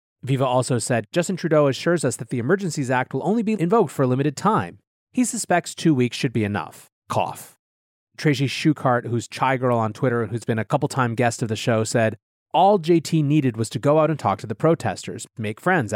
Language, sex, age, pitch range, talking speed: English, male, 30-49, 120-165 Hz, 220 wpm